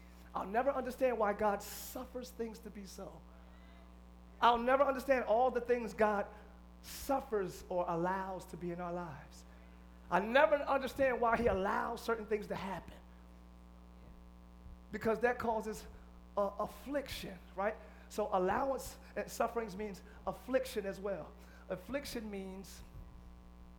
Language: English